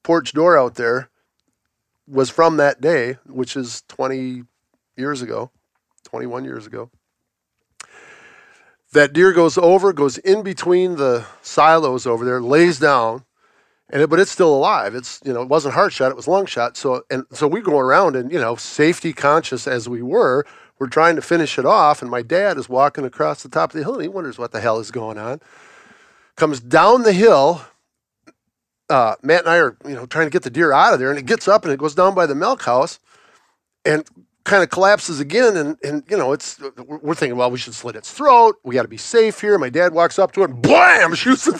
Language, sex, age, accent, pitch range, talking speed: English, male, 40-59, American, 130-195 Hz, 220 wpm